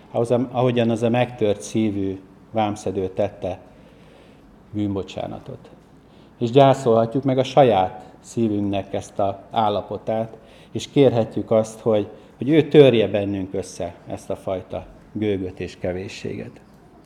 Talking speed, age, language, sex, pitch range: 115 wpm, 60-79, Hungarian, male, 100-120 Hz